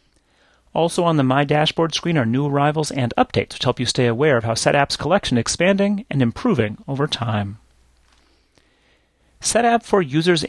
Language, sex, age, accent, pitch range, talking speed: English, male, 30-49, American, 120-155 Hz, 165 wpm